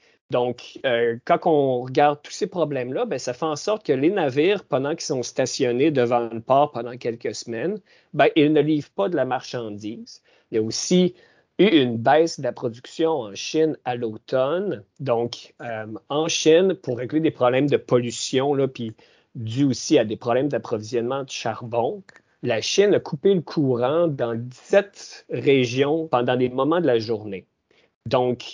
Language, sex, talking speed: French, male, 175 wpm